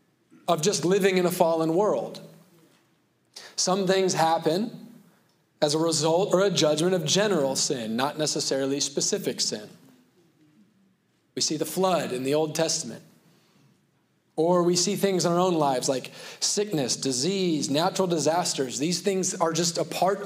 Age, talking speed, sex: 30-49, 150 wpm, male